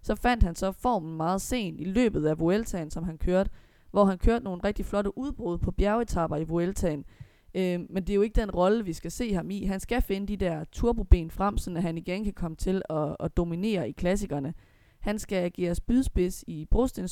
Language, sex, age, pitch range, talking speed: Danish, female, 20-39, 170-210 Hz, 215 wpm